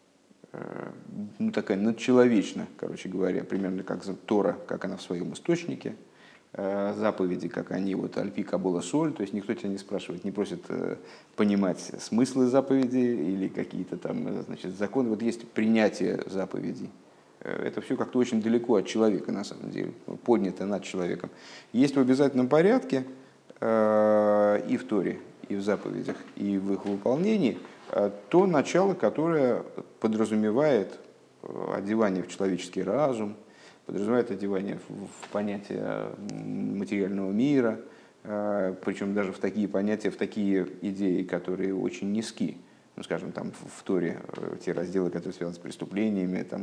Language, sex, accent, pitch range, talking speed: Russian, male, native, 95-115 Hz, 130 wpm